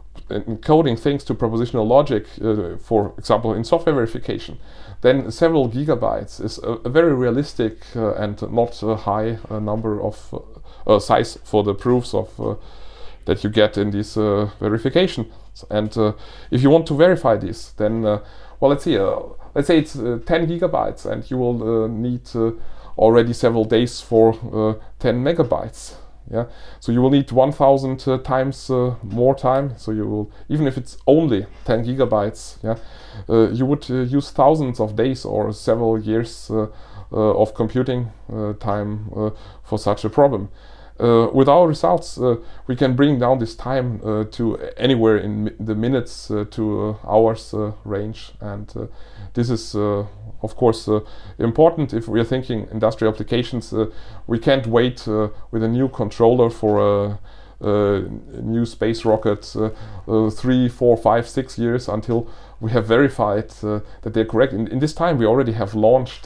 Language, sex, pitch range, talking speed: Danish, male, 105-125 Hz, 175 wpm